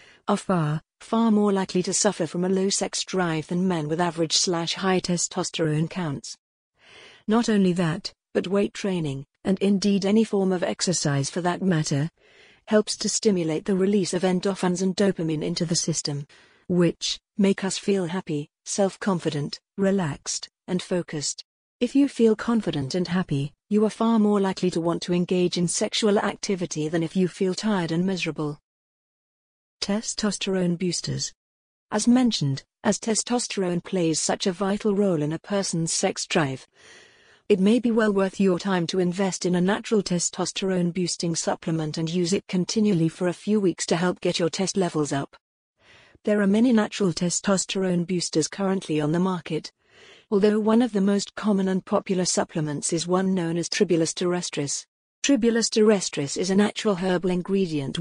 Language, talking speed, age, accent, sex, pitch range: English, 160 wpm, 40-59, British, female, 170-205 Hz